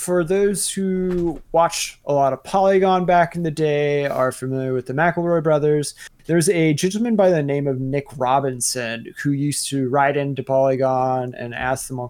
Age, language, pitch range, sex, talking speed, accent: 20-39, English, 135-170 Hz, male, 185 wpm, American